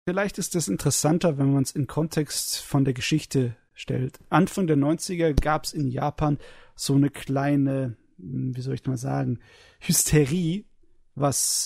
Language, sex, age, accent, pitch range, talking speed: German, male, 30-49, German, 135-165 Hz, 155 wpm